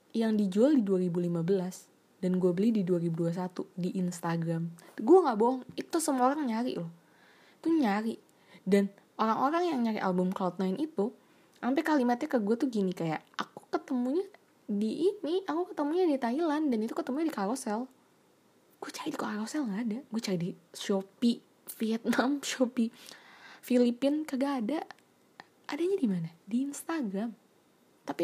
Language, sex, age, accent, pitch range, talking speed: Indonesian, female, 20-39, native, 185-260 Hz, 150 wpm